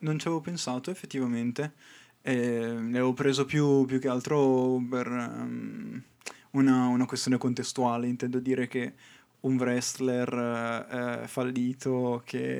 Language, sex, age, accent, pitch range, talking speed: Italian, male, 20-39, native, 120-130 Hz, 130 wpm